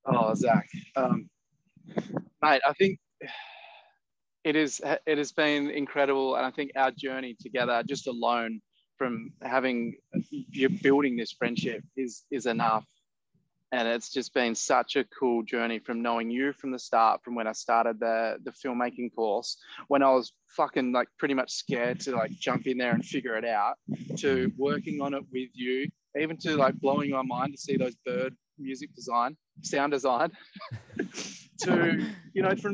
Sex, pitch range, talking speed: male, 125-155 Hz, 170 wpm